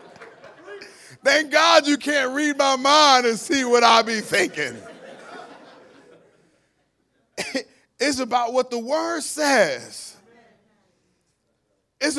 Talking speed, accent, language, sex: 100 wpm, American, English, male